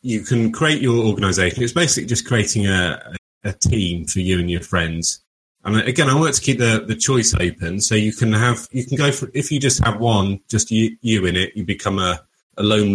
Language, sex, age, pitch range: English, male, 30-49, 90-110 Hz